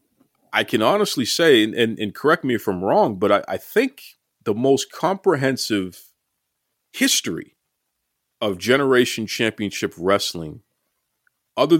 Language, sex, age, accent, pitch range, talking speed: English, male, 40-59, American, 95-125 Hz, 125 wpm